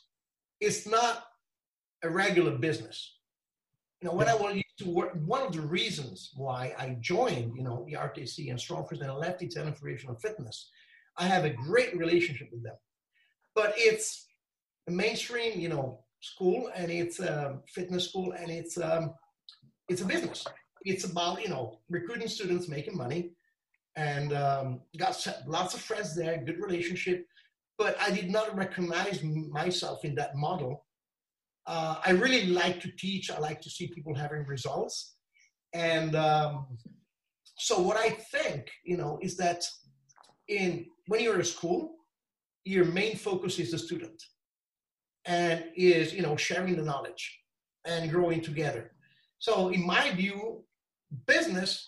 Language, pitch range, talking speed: English, 155-190 Hz, 155 wpm